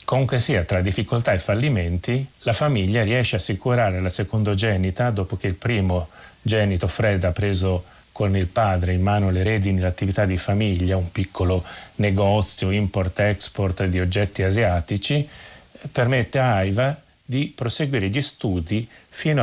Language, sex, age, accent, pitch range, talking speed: Italian, male, 30-49, native, 95-115 Hz, 140 wpm